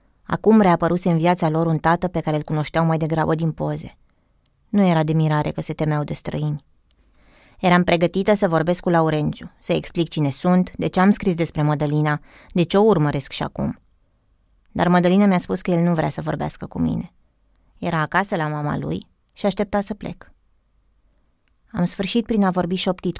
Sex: female